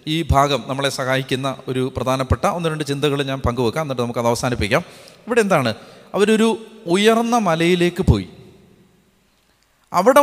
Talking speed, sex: 130 wpm, male